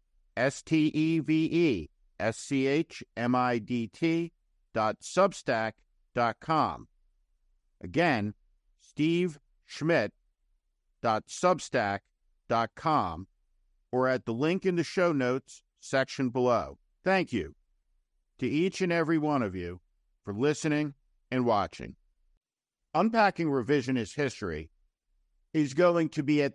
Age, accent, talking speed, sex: 50-69, American, 120 wpm, male